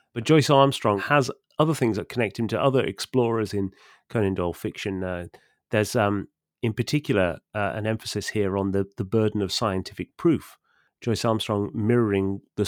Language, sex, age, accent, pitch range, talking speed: English, male, 30-49, British, 100-120 Hz, 170 wpm